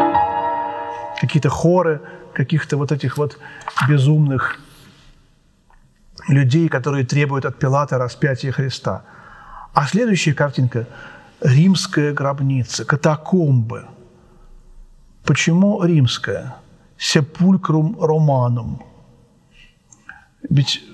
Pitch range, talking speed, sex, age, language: 130-155 Hz, 70 wpm, male, 40-59, Russian